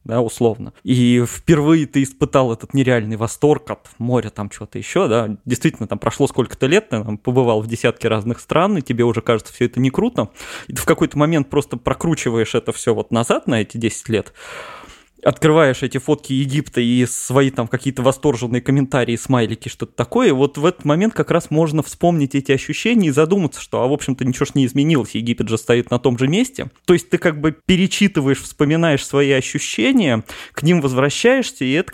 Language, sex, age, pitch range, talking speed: Russian, male, 20-39, 120-150 Hz, 195 wpm